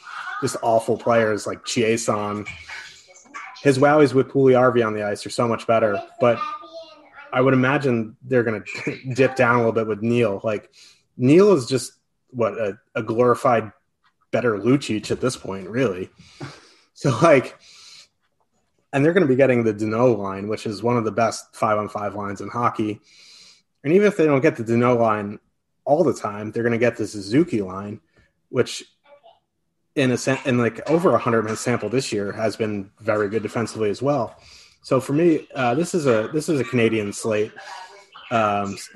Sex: male